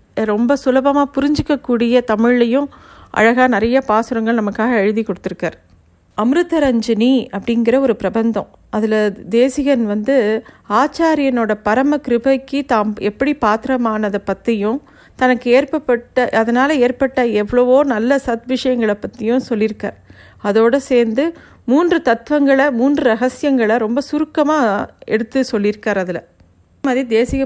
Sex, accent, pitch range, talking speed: female, native, 210-265 Hz, 105 wpm